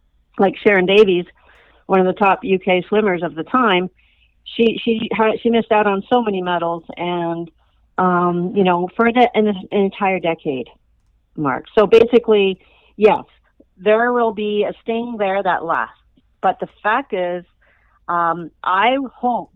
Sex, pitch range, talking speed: female, 165-215 Hz, 150 wpm